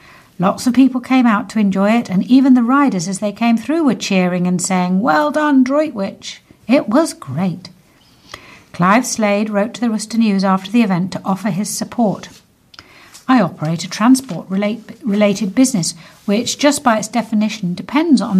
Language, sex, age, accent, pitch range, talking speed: English, female, 60-79, British, 190-240 Hz, 170 wpm